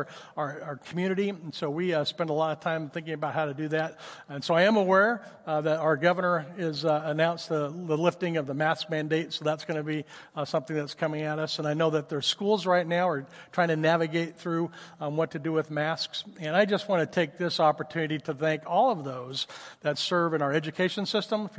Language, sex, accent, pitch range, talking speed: English, male, American, 155-185 Hz, 240 wpm